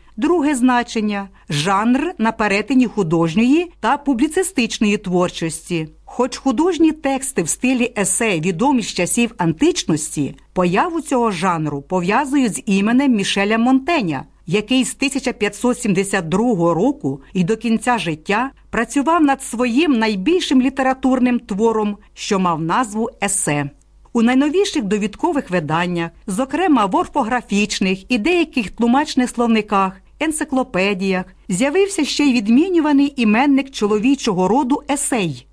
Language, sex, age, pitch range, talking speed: English, female, 50-69, 190-275 Hz, 110 wpm